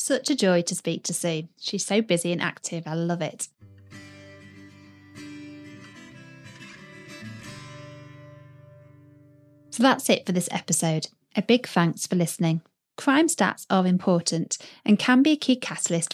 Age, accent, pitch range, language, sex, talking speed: 30-49, British, 165-235 Hz, English, female, 135 wpm